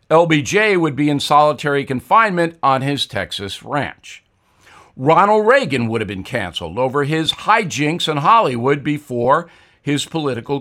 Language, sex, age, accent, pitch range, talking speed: English, male, 50-69, American, 120-165 Hz, 135 wpm